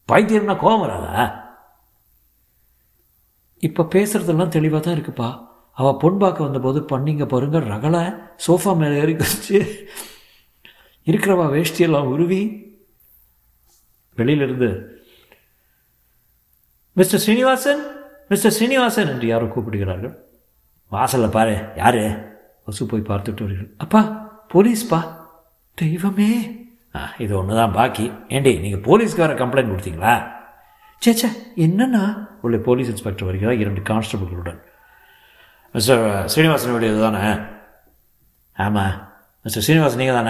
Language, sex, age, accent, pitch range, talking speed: Tamil, male, 50-69, native, 105-165 Hz, 95 wpm